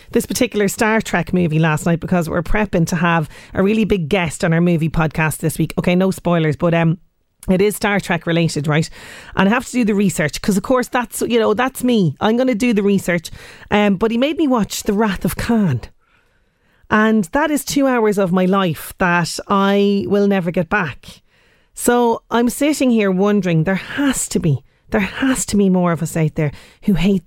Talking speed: 215 wpm